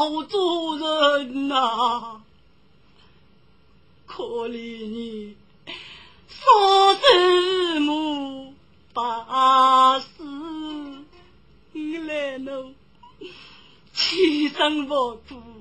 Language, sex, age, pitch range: Chinese, female, 30-49, 260-345 Hz